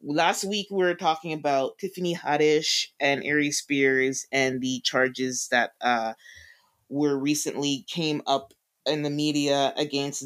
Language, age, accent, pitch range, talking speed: English, 20-39, American, 135-160 Hz, 140 wpm